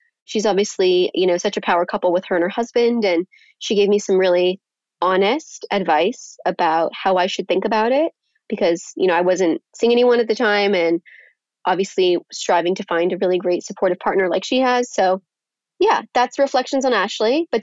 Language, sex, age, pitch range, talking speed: English, female, 20-39, 190-230 Hz, 195 wpm